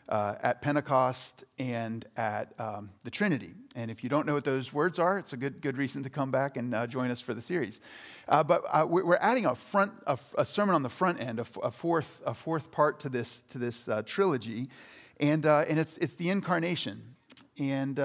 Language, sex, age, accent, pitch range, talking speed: English, male, 40-59, American, 135-175 Hz, 225 wpm